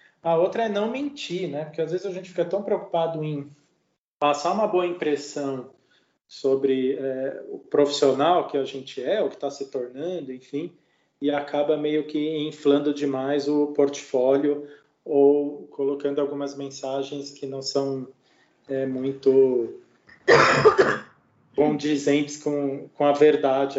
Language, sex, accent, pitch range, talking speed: Portuguese, male, Brazilian, 135-175 Hz, 140 wpm